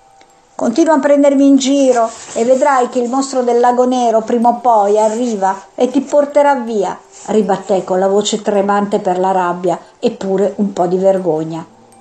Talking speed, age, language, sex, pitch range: 175 wpm, 50-69, Italian, female, 195-250 Hz